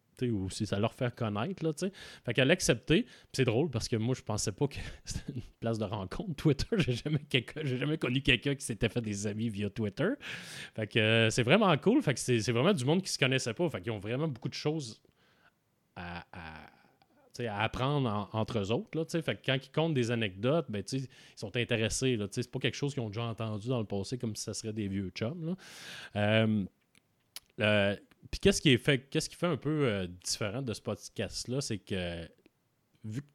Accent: Canadian